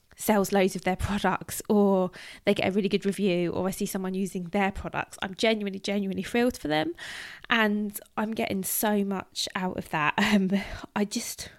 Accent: British